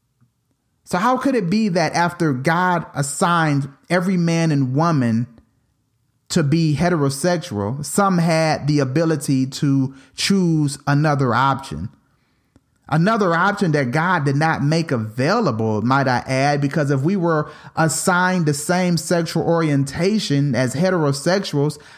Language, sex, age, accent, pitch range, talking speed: English, male, 30-49, American, 125-175 Hz, 125 wpm